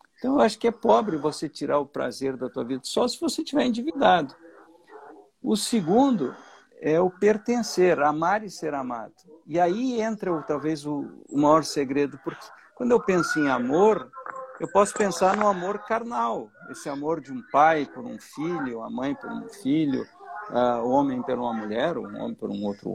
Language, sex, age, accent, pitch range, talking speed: Portuguese, male, 60-79, Brazilian, 145-230 Hz, 180 wpm